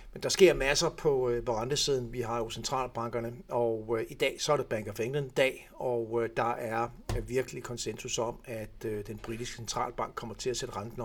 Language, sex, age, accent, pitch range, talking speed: Danish, male, 60-79, native, 115-125 Hz, 210 wpm